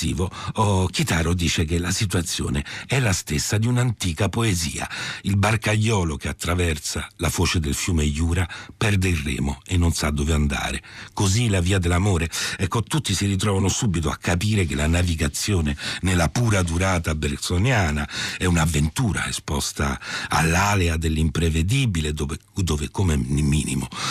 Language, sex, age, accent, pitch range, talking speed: Italian, male, 60-79, native, 80-110 Hz, 140 wpm